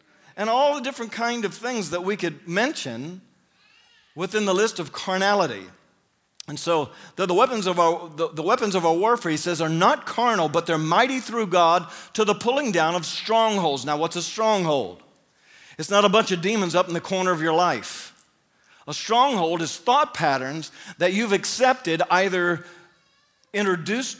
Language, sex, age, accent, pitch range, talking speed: English, male, 50-69, American, 170-215 Hz, 170 wpm